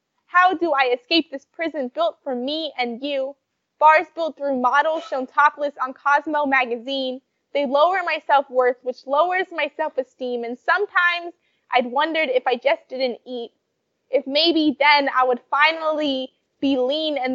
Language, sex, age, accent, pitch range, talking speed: English, female, 20-39, American, 265-320 Hz, 160 wpm